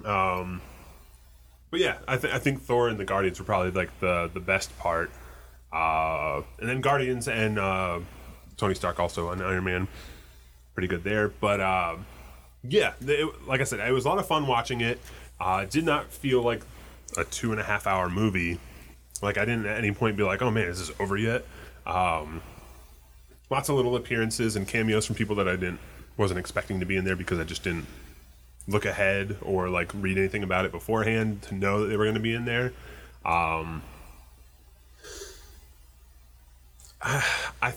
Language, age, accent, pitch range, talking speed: English, 10-29, American, 65-110 Hz, 185 wpm